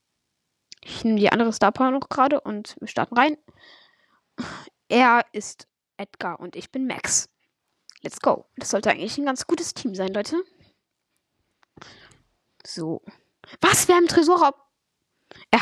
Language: German